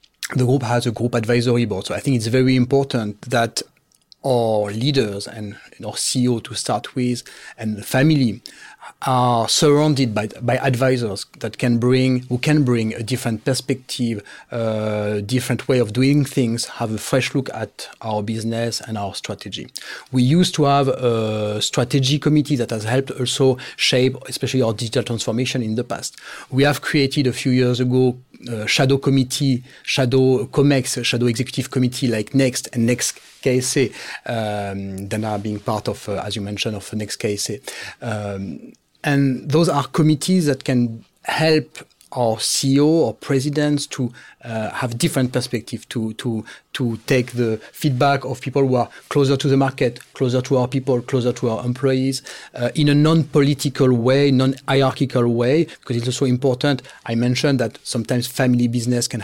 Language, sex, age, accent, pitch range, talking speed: English, male, 40-59, French, 120-135 Hz, 165 wpm